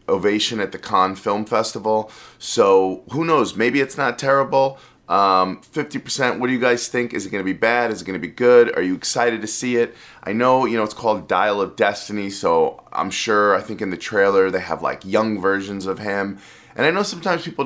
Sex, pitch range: male, 95-125 Hz